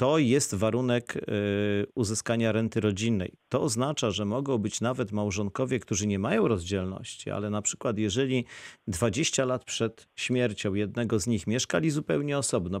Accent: native